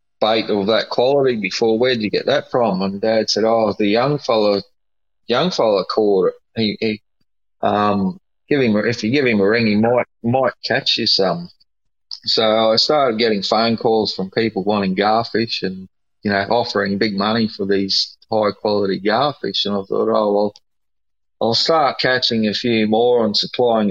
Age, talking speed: 30-49, 185 wpm